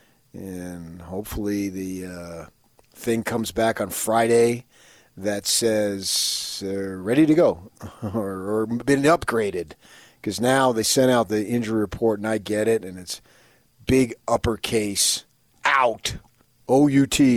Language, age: English, 40-59